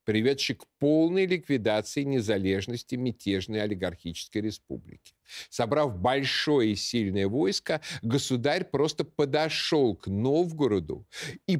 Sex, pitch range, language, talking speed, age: male, 110-175 Hz, Russian, 100 wpm, 50-69